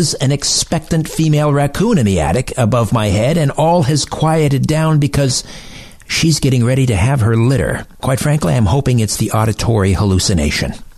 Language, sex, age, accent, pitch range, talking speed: English, male, 60-79, American, 105-145 Hz, 170 wpm